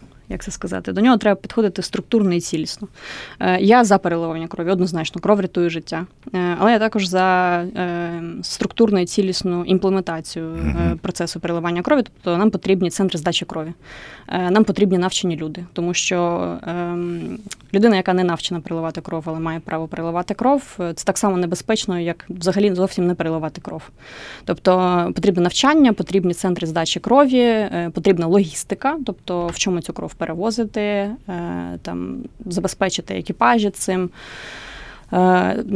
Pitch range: 170-200 Hz